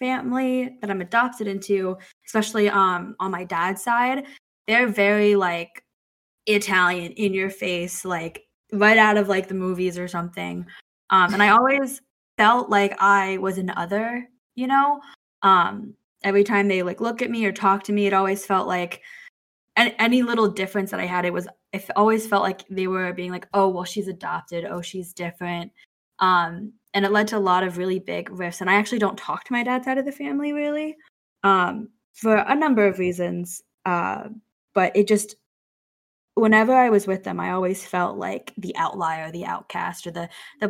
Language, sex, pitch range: English, female, 180-220 Hz